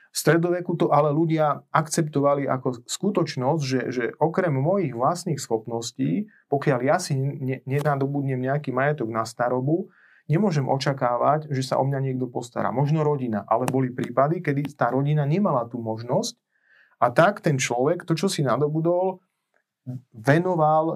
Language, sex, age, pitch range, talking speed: Slovak, male, 30-49, 130-155 Hz, 145 wpm